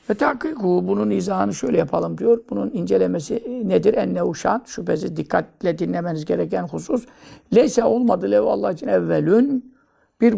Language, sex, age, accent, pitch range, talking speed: Turkish, male, 60-79, native, 160-245 Hz, 125 wpm